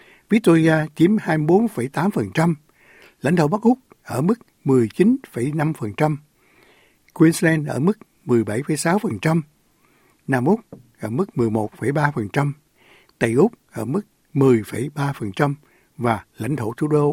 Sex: male